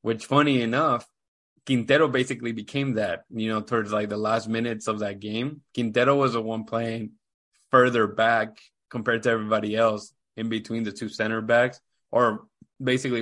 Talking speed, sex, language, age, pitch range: 165 wpm, male, English, 20-39, 110-125 Hz